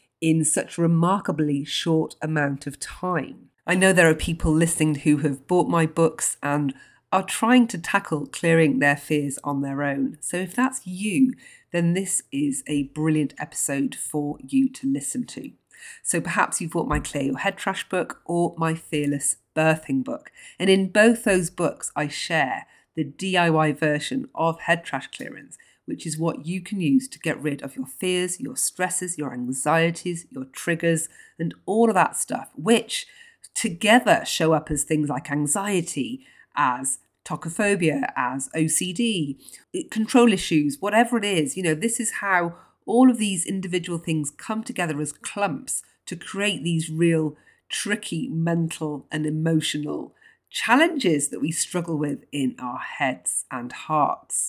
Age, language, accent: 40-59, English, British